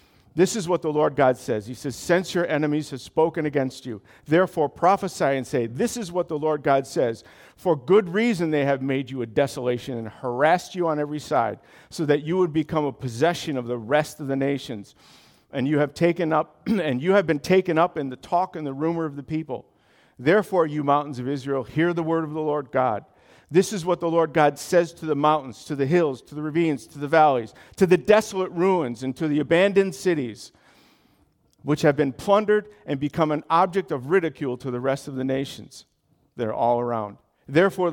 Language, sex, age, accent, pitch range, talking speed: English, male, 50-69, American, 135-170 Hz, 215 wpm